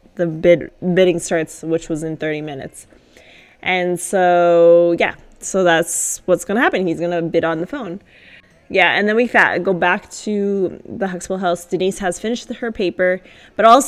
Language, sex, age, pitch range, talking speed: English, female, 20-39, 170-220 Hz, 180 wpm